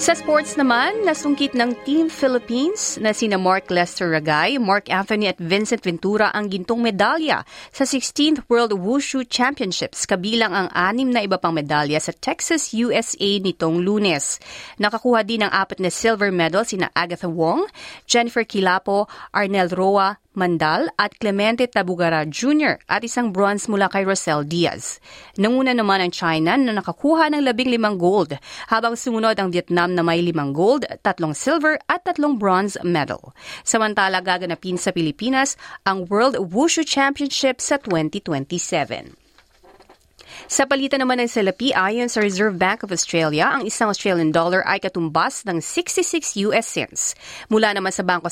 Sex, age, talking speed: female, 30-49, 155 wpm